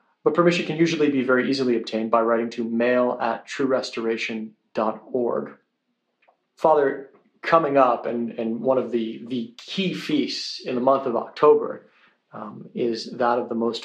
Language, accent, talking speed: English, American, 155 wpm